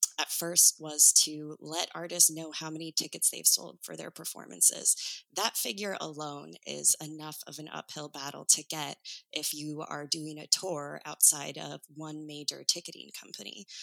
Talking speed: 165 wpm